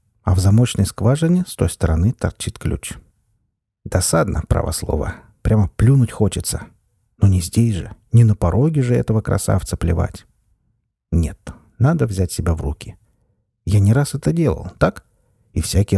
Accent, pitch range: native, 95-120 Hz